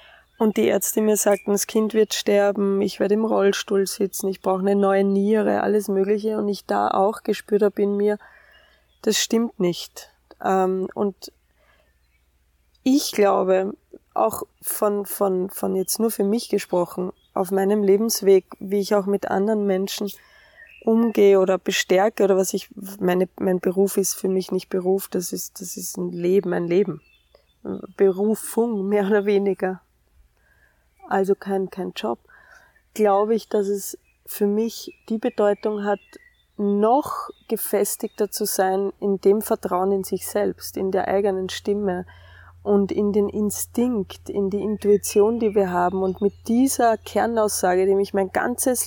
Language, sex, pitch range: German, female, 190-210 Hz